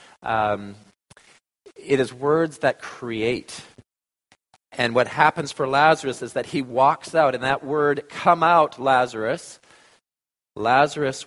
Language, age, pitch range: English, 40-59, 120-155 Hz